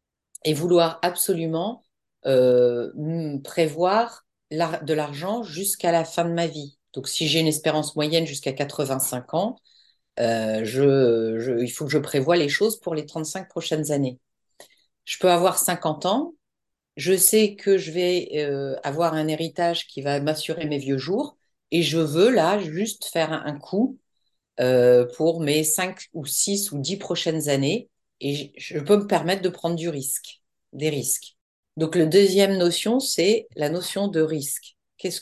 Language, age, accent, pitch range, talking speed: French, 50-69, French, 150-190 Hz, 165 wpm